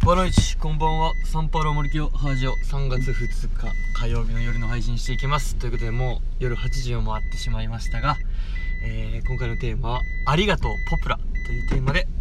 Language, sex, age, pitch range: Japanese, male, 20-39, 80-120 Hz